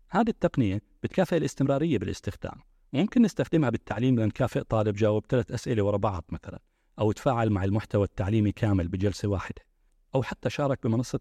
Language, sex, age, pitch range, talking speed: Arabic, male, 40-59, 95-125 Hz, 150 wpm